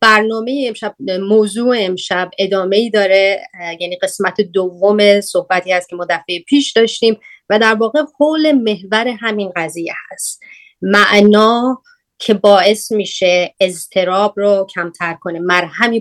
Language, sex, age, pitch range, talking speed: Persian, female, 30-49, 180-215 Hz, 125 wpm